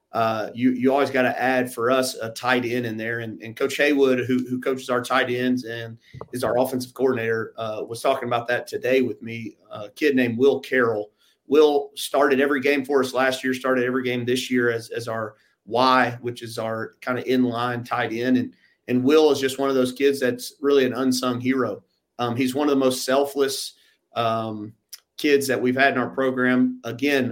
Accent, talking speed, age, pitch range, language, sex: American, 215 wpm, 40-59, 115-130 Hz, English, male